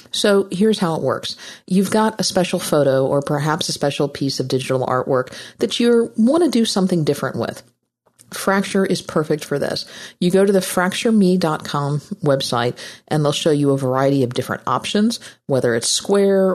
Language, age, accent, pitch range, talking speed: English, 50-69, American, 140-195 Hz, 180 wpm